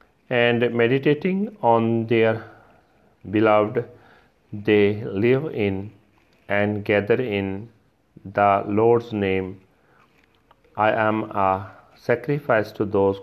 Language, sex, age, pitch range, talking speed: Punjabi, male, 40-59, 100-125 Hz, 90 wpm